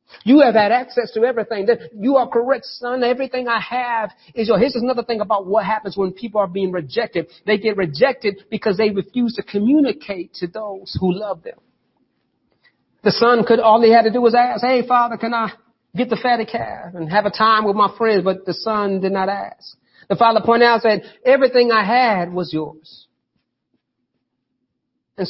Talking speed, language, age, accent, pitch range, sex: 190 wpm, English, 40-59, American, 195-240 Hz, male